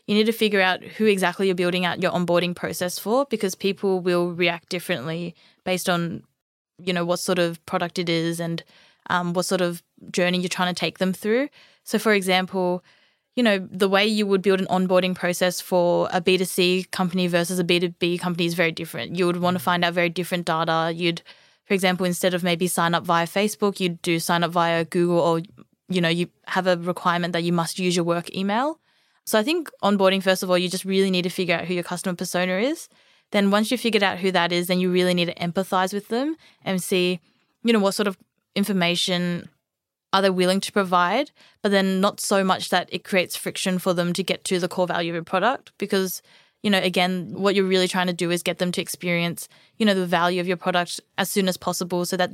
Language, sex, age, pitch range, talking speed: English, female, 20-39, 175-195 Hz, 230 wpm